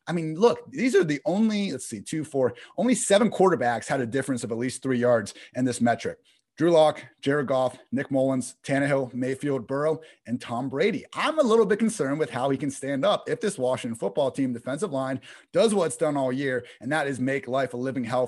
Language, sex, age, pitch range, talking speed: English, male, 30-49, 125-165 Hz, 225 wpm